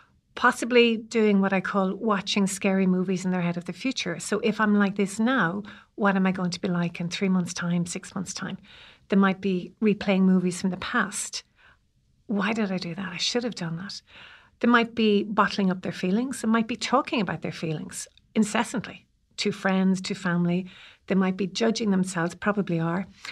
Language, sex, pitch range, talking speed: English, female, 185-225 Hz, 200 wpm